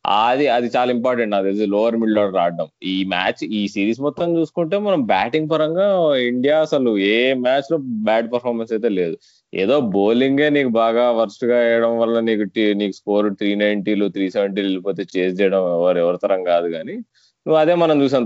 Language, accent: Telugu, native